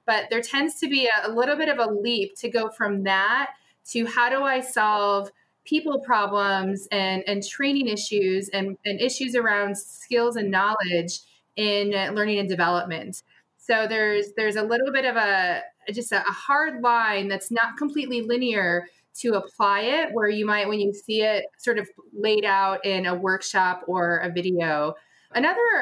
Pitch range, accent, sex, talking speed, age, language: 200-250 Hz, American, female, 170 wpm, 20-39, English